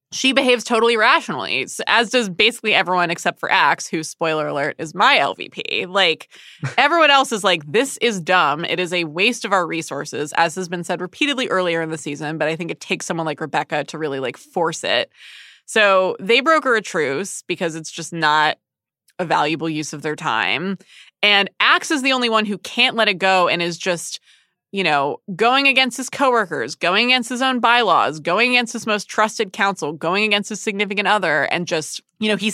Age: 20-39